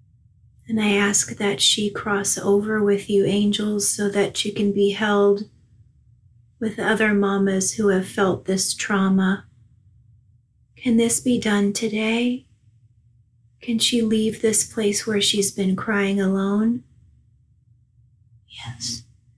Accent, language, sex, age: American, English, female, 30-49